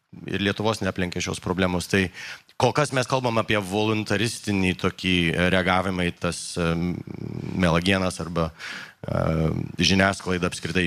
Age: 30-49